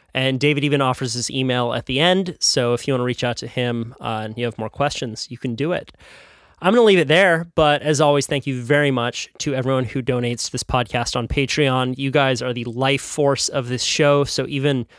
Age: 30-49